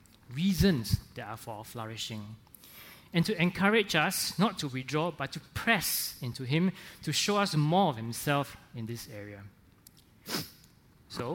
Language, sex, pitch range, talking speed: English, male, 115-180 Hz, 150 wpm